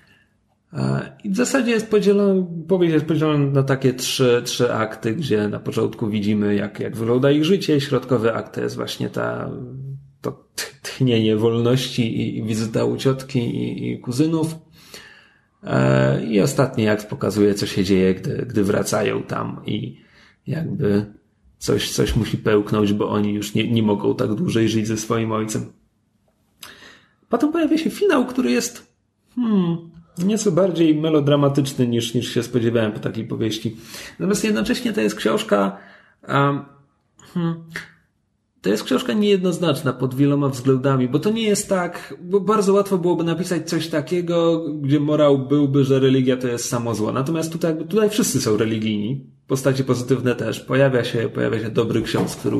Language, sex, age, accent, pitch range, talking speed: Polish, male, 30-49, native, 110-165 Hz, 155 wpm